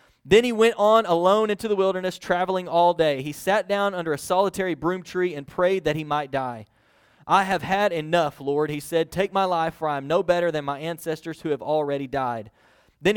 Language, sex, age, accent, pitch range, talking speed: English, male, 30-49, American, 150-190 Hz, 220 wpm